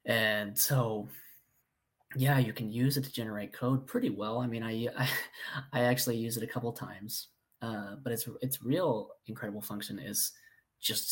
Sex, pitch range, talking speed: male, 105-125 Hz, 180 wpm